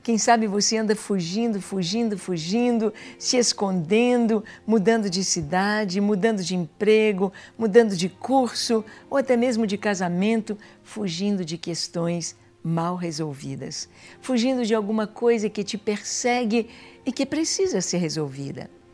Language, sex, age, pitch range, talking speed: Portuguese, female, 60-79, 170-230 Hz, 125 wpm